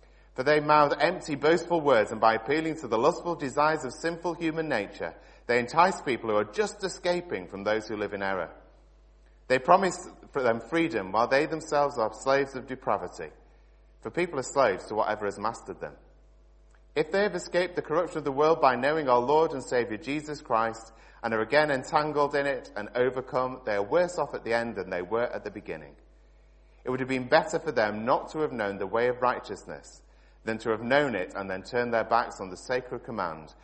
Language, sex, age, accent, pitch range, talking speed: English, male, 30-49, British, 110-150 Hz, 210 wpm